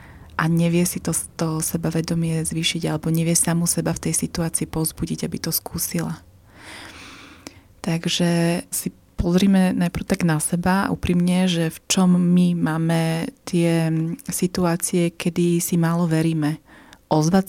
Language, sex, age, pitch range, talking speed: Slovak, female, 20-39, 160-180 Hz, 130 wpm